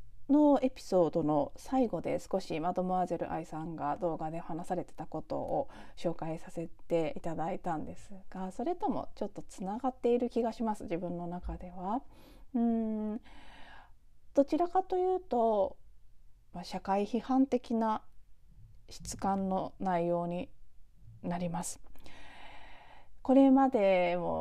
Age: 30-49